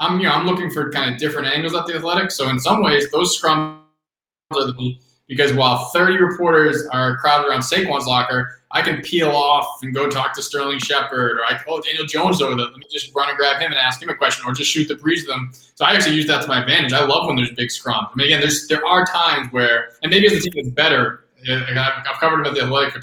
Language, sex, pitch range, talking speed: English, male, 125-155 Hz, 270 wpm